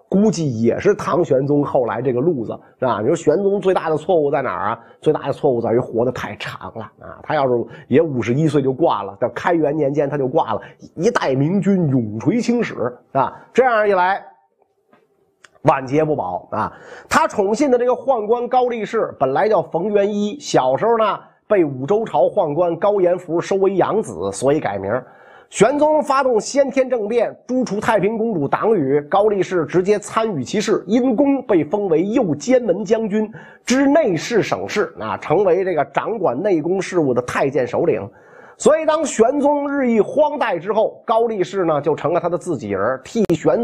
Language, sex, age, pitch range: Chinese, male, 30-49, 165-255 Hz